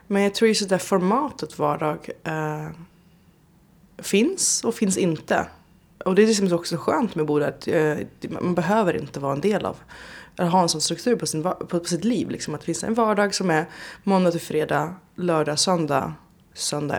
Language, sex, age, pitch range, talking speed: Swedish, female, 20-39, 160-205 Hz, 190 wpm